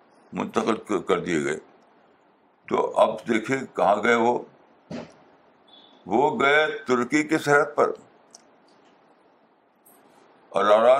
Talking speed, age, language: 95 wpm, 60-79, Urdu